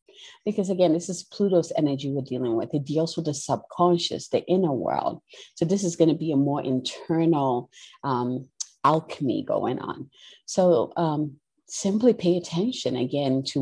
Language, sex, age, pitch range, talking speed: English, female, 30-49, 140-180 Hz, 165 wpm